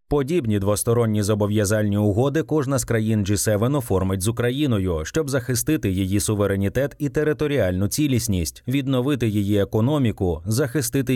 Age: 30-49